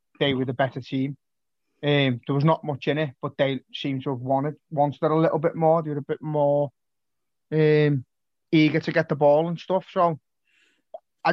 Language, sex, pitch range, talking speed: English, male, 140-165 Hz, 200 wpm